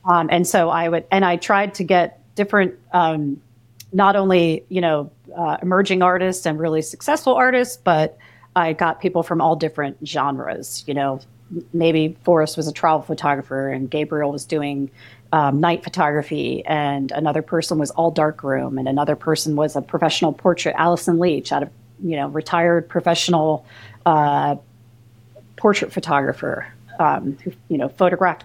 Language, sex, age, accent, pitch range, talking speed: English, female, 40-59, American, 145-180 Hz, 160 wpm